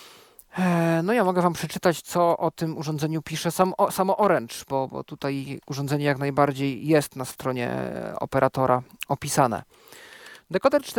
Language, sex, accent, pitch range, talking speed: Polish, male, native, 145-195 Hz, 130 wpm